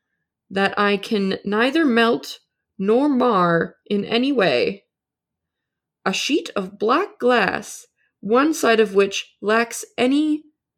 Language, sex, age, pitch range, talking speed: English, female, 20-39, 185-260 Hz, 115 wpm